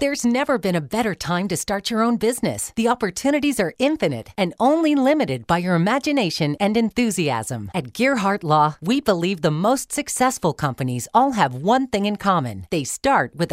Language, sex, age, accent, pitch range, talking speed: English, female, 40-59, American, 160-230 Hz, 180 wpm